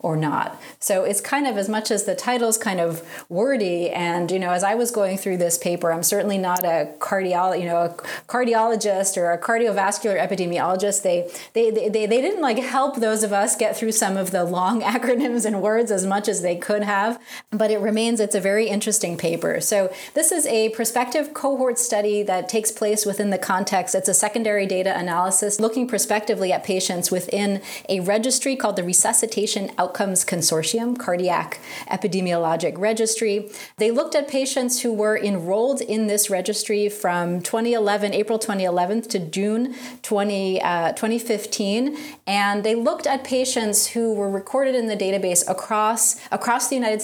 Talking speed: 170 wpm